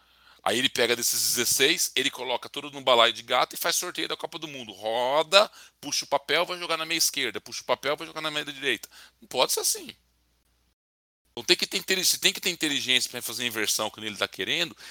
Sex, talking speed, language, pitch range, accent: male, 220 wpm, Portuguese, 100-145 Hz, Brazilian